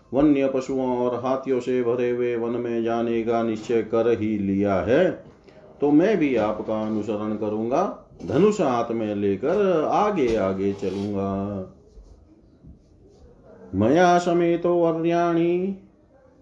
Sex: male